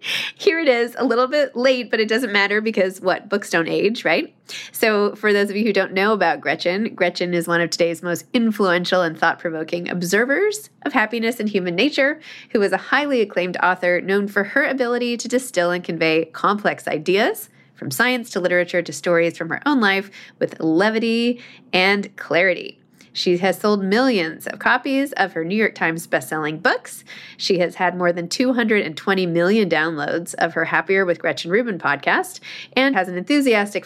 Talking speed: 185 wpm